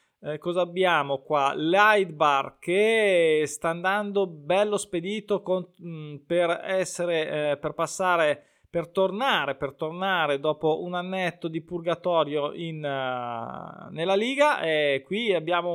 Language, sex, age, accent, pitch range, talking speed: Italian, male, 20-39, native, 150-200 Hz, 125 wpm